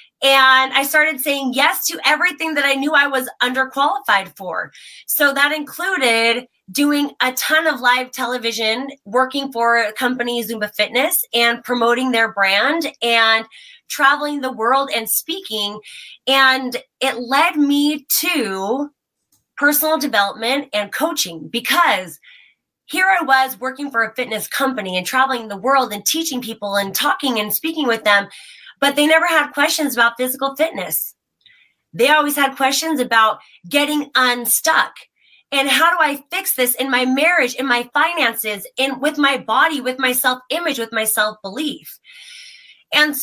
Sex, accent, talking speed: female, American, 155 wpm